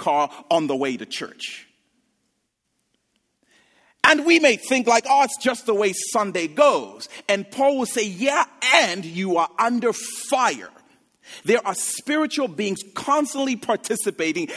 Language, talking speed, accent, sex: English, 140 wpm, American, male